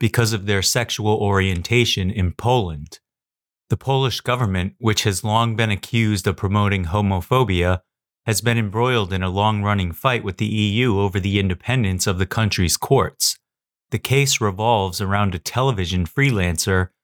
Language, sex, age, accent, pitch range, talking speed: English, male, 30-49, American, 95-115 Hz, 150 wpm